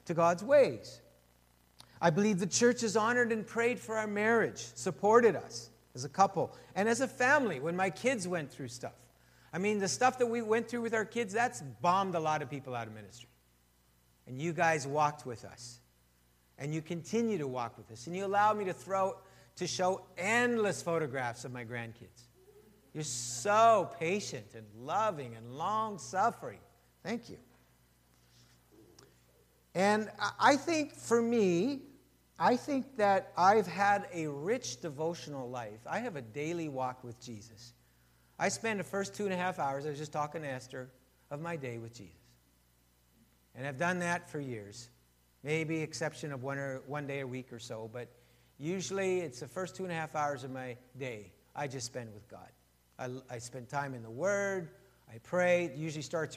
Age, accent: 50-69, American